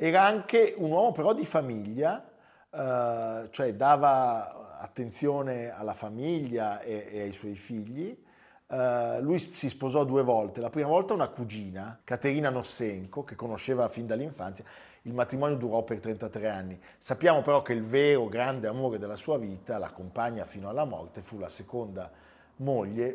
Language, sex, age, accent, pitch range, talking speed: Italian, male, 40-59, native, 110-135 Hz, 155 wpm